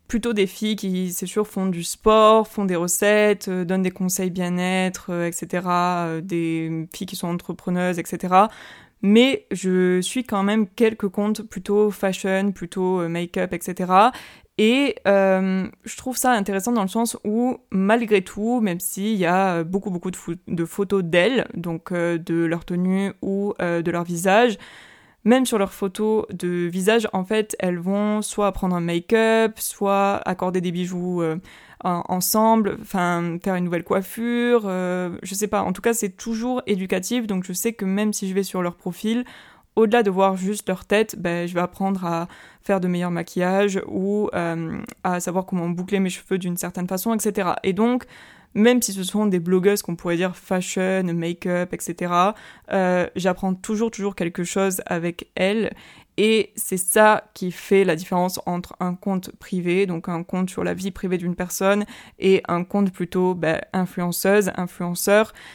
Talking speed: 175 wpm